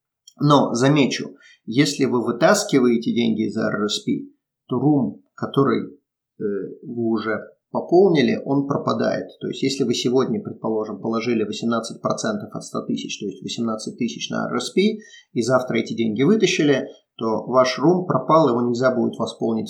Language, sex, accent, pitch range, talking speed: Russian, male, native, 115-145 Hz, 145 wpm